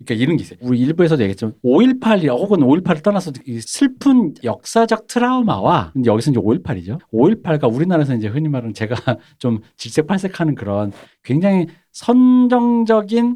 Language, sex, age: Korean, male, 40-59